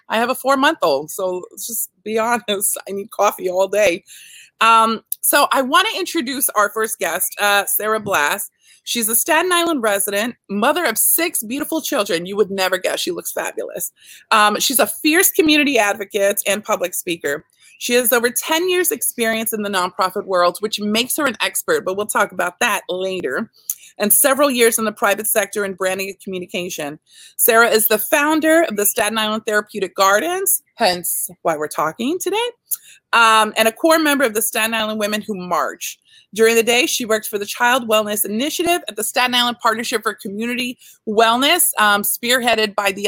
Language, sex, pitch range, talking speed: English, female, 200-255 Hz, 185 wpm